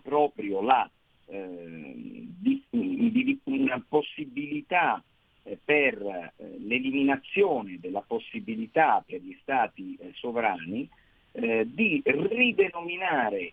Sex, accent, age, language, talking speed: male, native, 50-69, Italian, 80 wpm